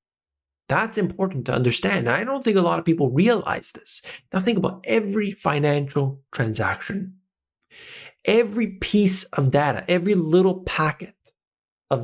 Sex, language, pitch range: male, English, 125-190 Hz